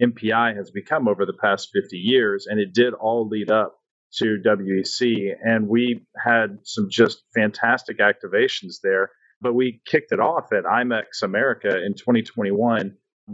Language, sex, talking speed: English, male, 155 wpm